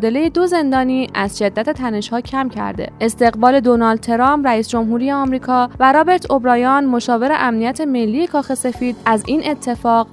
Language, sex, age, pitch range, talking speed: Persian, female, 10-29, 225-285 Hz, 155 wpm